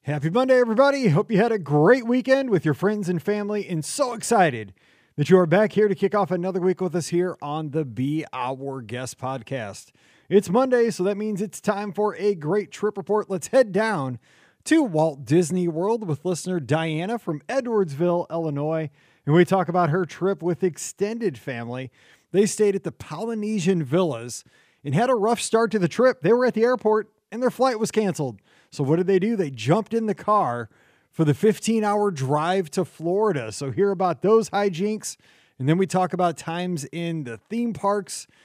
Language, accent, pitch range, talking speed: English, American, 155-210 Hz, 195 wpm